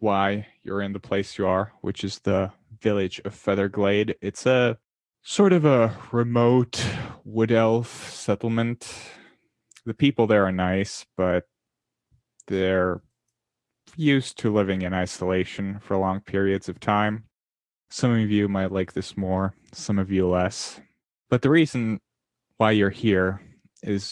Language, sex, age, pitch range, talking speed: English, male, 20-39, 95-110 Hz, 140 wpm